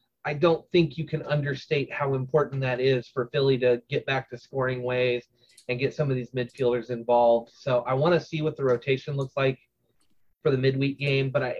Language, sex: English, male